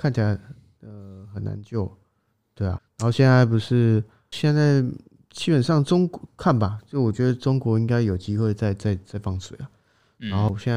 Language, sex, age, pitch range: Chinese, male, 20-39, 100-115 Hz